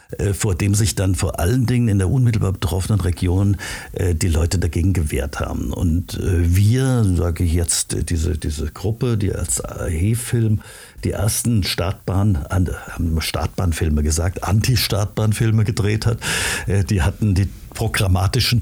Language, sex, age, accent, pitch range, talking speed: German, male, 60-79, German, 90-110 Hz, 130 wpm